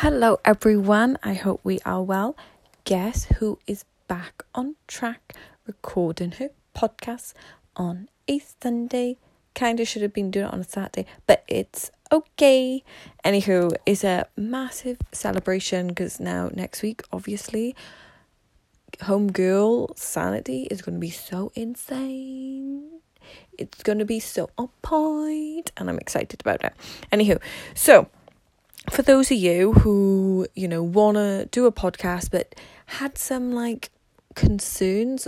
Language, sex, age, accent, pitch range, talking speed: English, female, 20-39, British, 185-245 Hz, 140 wpm